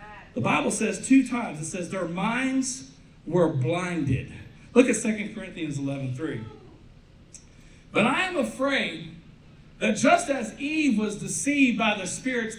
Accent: American